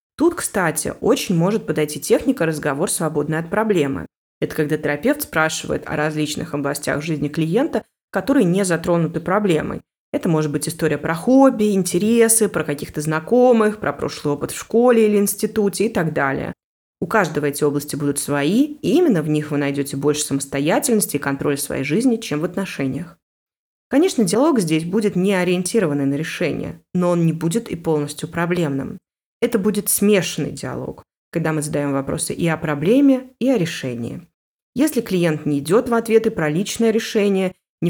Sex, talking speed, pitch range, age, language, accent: female, 165 wpm, 150-210 Hz, 20-39, Russian, native